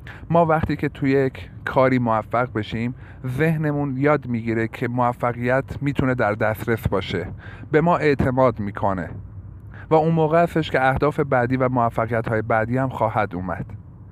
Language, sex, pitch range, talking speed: Persian, male, 105-140 Hz, 150 wpm